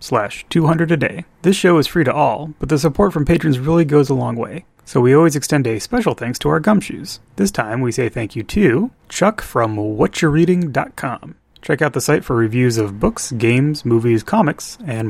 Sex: male